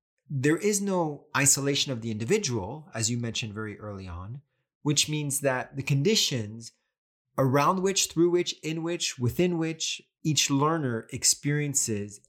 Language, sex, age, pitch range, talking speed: English, male, 30-49, 115-150 Hz, 140 wpm